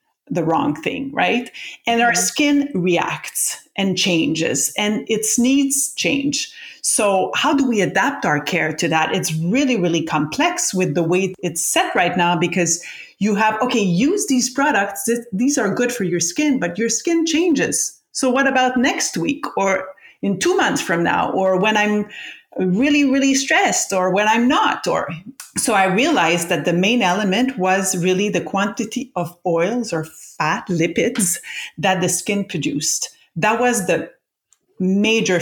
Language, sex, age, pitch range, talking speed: English, female, 30-49, 180-265 Hz, 165 wpm